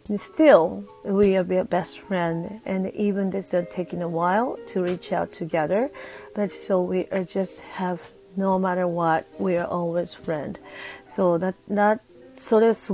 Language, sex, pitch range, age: Japanese, female, 175-225 Hz, 40-59